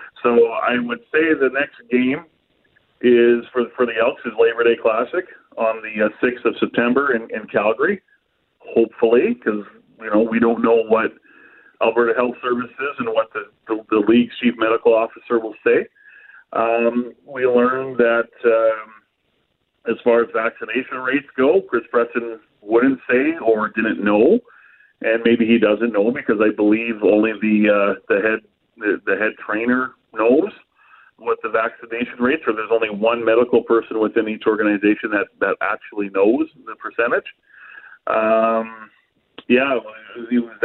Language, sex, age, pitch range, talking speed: English, male, 40-59, 110-125 Hz, 155 wpm